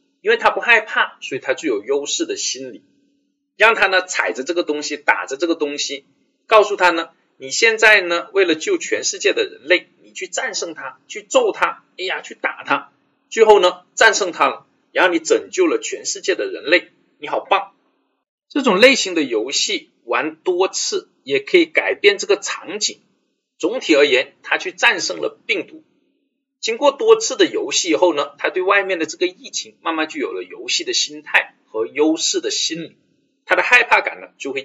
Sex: male